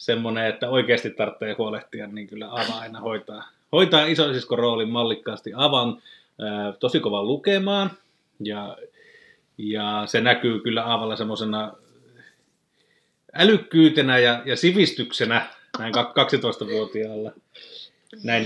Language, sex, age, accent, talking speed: Finnish, male, 30-49, native, 105 wpm